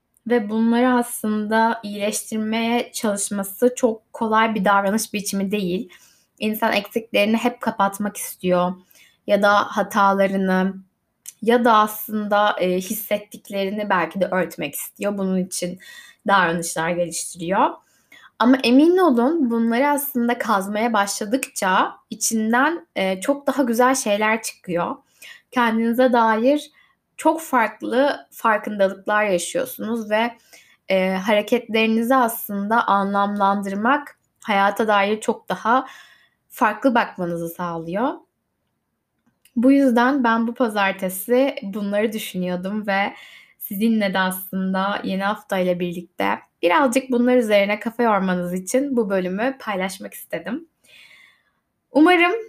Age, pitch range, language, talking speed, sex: 10-29, 195-245 Hz, Turkish, 100 wpm, female